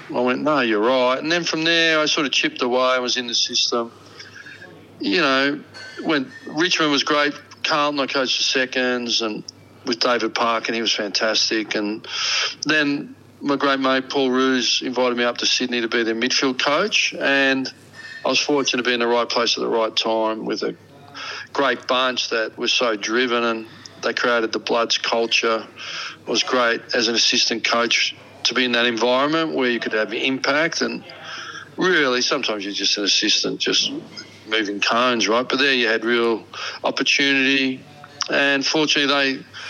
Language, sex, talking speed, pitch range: English, male, 180 wpm, 115-135 Hz